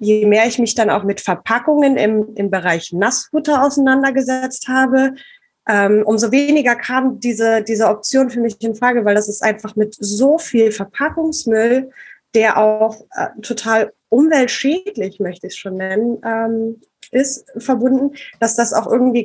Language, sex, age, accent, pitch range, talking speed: German, female, 20-39, German, 210-255 Hz, 155 wpm